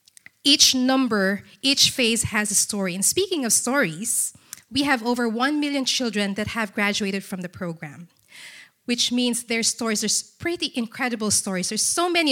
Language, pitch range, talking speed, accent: English, 190-245 Hz, 165 wpm, Filipino